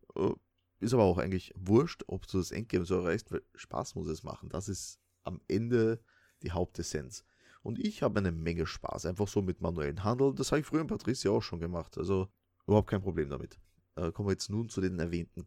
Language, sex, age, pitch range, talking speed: German, male, 30-49, 85-100 Hz, 210 wpm